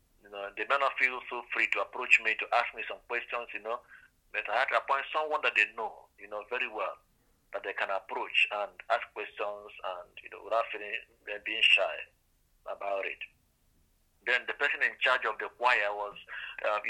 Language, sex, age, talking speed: English, male, 50-69, 205 wpm